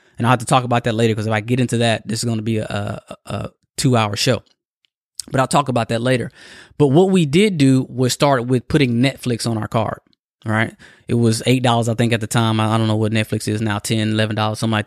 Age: 20-39